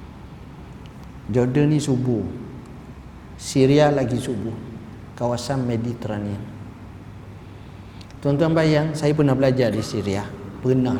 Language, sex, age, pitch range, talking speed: Malay, male, 50-69, 115-190 Hz, 85 wpm